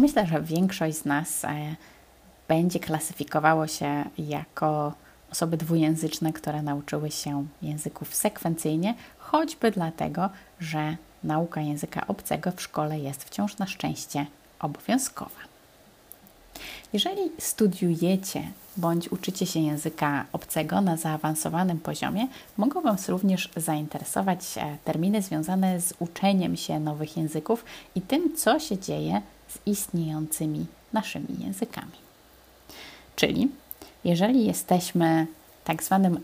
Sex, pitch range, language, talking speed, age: female, 155-190 Hz, Polish, 105 wpm, 30-49